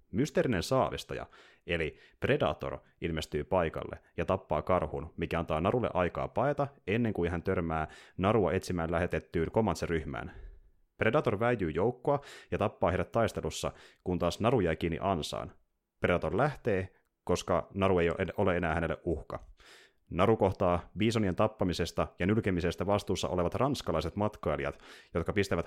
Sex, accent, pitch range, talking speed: male, native, 85-105 Hz, 130 wpm